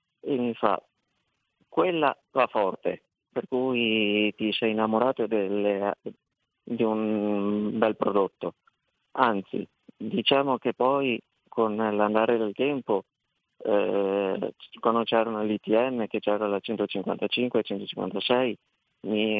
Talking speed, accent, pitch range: 105 wpm, native, 100-115 Hz